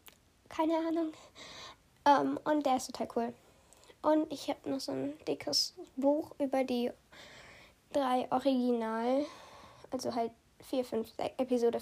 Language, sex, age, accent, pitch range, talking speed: German, female, 10-29, German, 245-315 Hz, 125 wpm